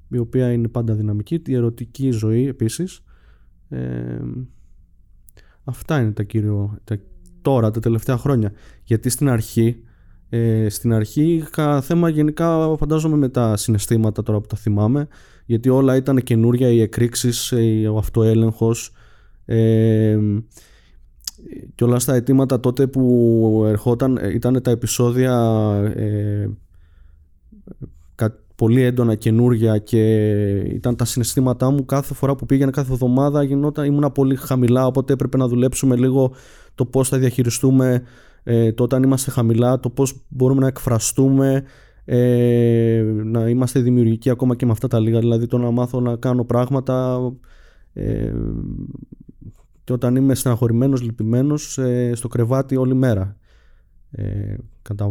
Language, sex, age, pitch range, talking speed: Greek, male, 20-39, 110-130 Hz, 130 wpm